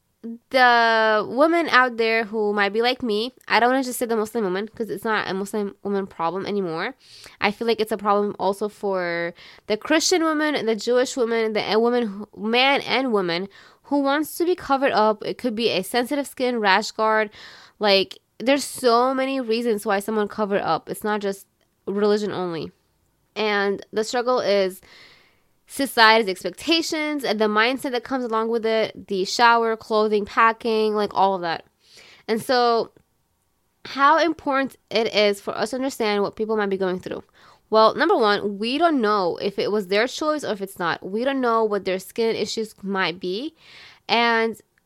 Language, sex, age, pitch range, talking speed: English, female, 20-39, 200-245 Hz, 180 wpm